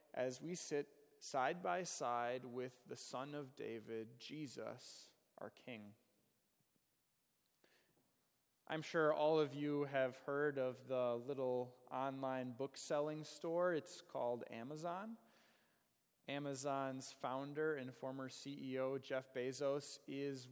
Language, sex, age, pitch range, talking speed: English, male, 20-39, 130-155 Hz, 115 wpm